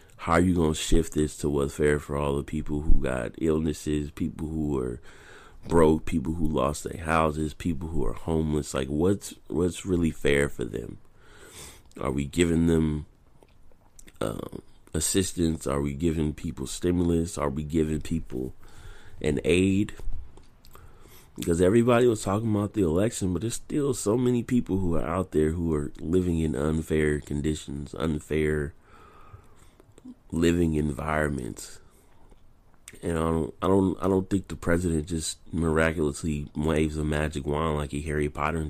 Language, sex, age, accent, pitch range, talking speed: English, male, 30-49, American, 75-90 Hz, 155 wpm